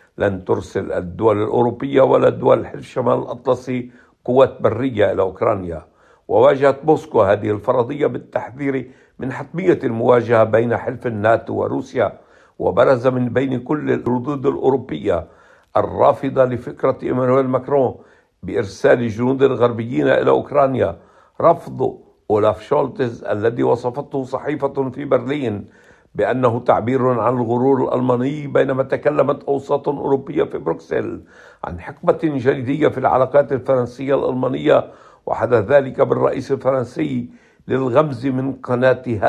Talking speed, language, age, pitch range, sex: 110 wpm, Arabic, 60-79, 125-140 Hz, male